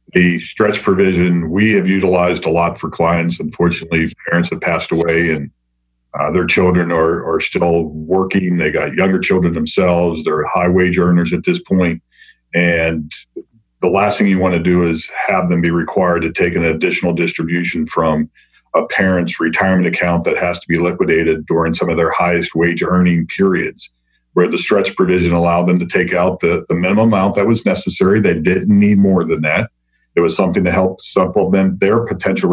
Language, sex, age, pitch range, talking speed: English, male, 40-59, 85-95 Hz, 185 wpm